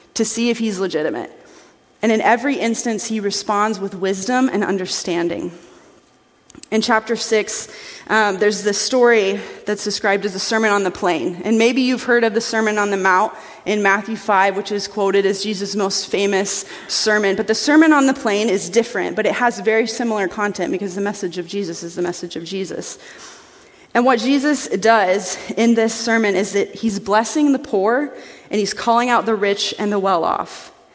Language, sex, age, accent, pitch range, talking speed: English, female, 30-49, American, 195-225 Hz, 185 wpm